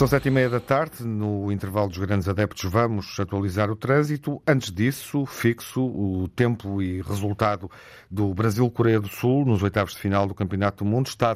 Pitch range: 95-110 Hz